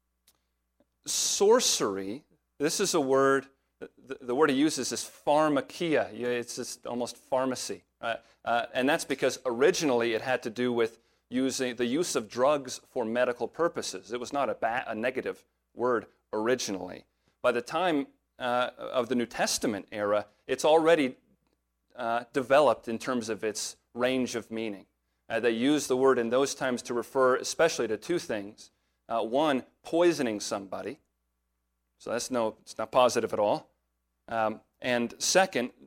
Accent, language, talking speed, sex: American, English, 150 wpm, male